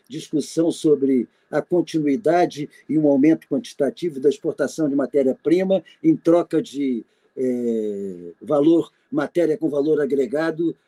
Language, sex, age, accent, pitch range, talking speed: Portuguese, male, 50-69, Brazilian, 150-230 Hz, 115 wpm